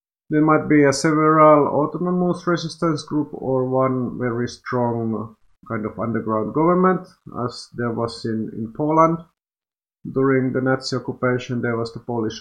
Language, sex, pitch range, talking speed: Finnish, male, 115-145 Hz, 145 wpm